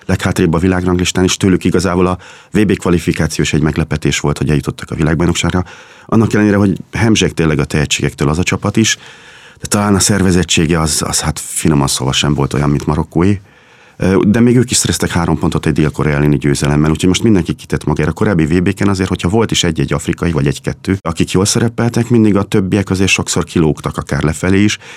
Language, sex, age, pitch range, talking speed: English, male, 30-49, 75-95 Hz, 185 wpm